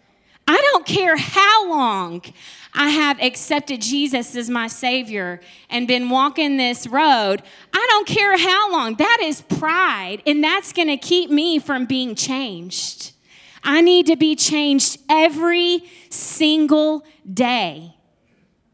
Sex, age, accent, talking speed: female, 20-39, American, 135 wpm